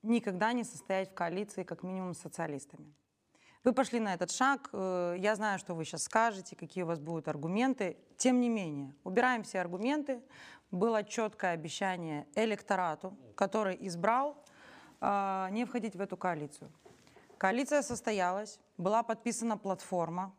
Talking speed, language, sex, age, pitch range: 140 wpm, Romanian, female, 20-39, 185-230 Hz